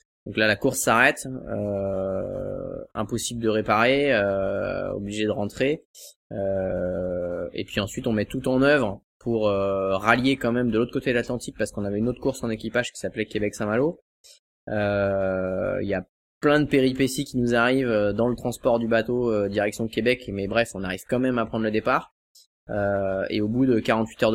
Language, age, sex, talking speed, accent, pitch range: French, 20-39, male, 185 wpm, French, 100-120 Hz